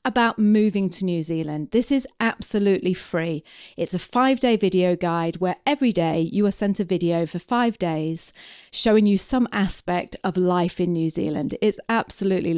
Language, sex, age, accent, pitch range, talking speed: English, female, 40-59, British, 180-235 Hz, 170 wpm